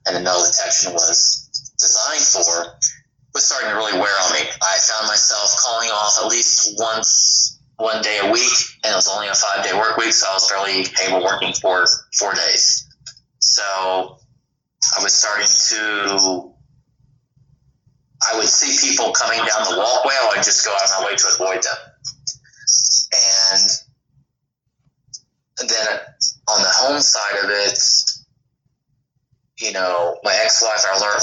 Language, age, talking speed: English, 20-39, 155 wpm